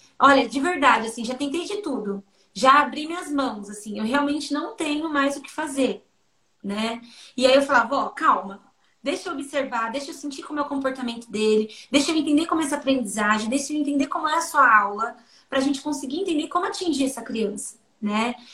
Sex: female